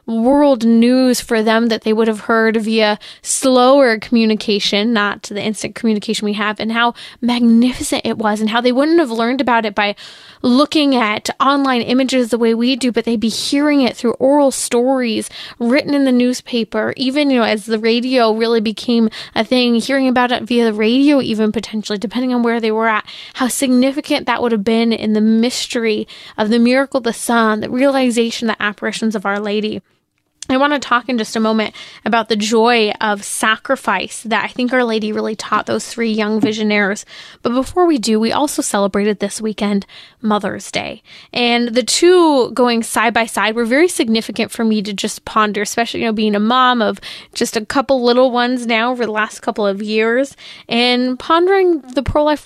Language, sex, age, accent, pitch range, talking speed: English, female, 20-39, American, 215-255 Hz, 195 wpm